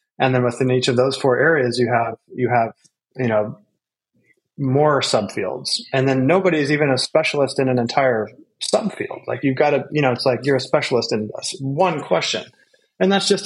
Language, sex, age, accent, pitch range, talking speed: English, male, 30-49, American, 120-150 Hz, 195 wpm